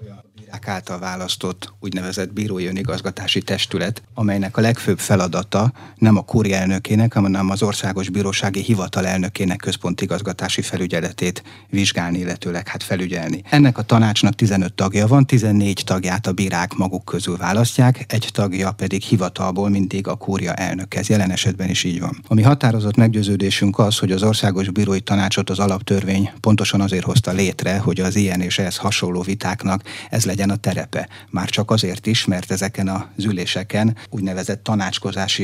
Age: 30-49